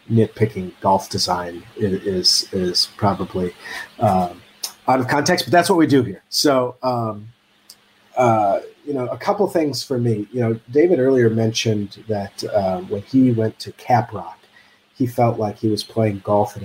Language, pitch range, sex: English, 100-120 Hz, male